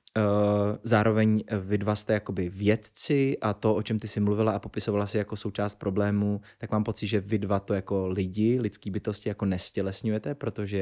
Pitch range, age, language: 100-110 Hz, 20-39, Czech